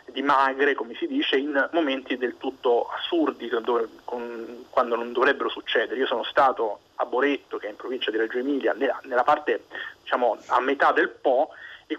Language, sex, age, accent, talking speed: Italian, male, 30-49, native, 170 wpm